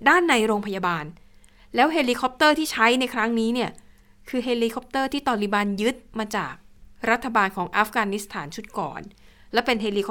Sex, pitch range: female, 190-235 Hz